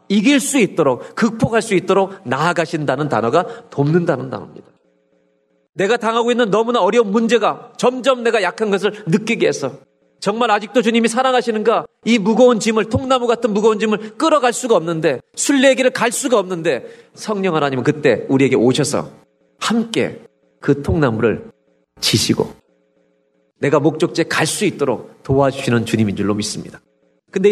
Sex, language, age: male, Korean, 40-59